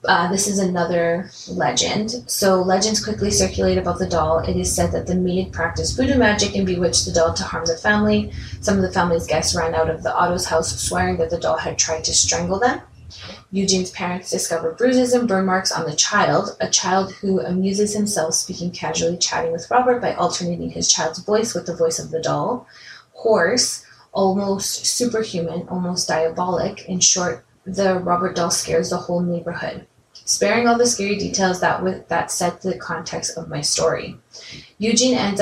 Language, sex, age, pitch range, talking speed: English, female, 20-39, 170-210 Hz, 185 wpm